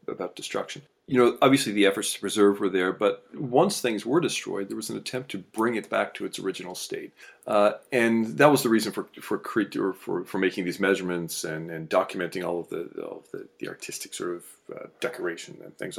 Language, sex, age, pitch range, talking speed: English, male, 40-59, 95-140 Hz, 220 wpm